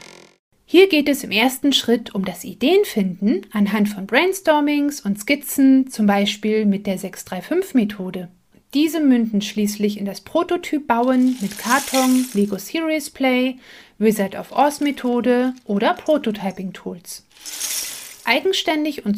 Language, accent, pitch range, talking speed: German, German, 200-270 Hz, 110 wpm